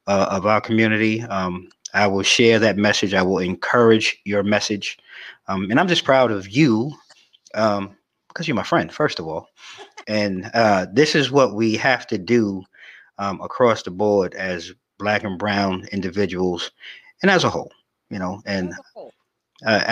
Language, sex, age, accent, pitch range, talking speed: English, male, 30-49, American, 100-130 Hz, 170 wpm